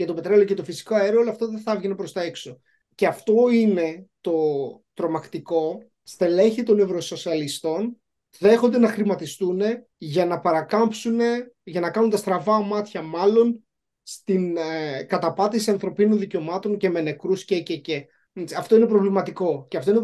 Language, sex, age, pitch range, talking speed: Greek, male, 30-49, 170-210 Hz, 155 wpm